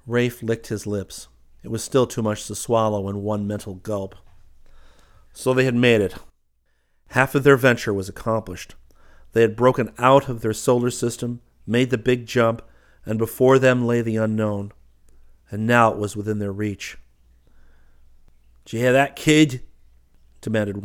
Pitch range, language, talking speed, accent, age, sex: 95-120 Hz, English, 160 wpm, American, 40-59, male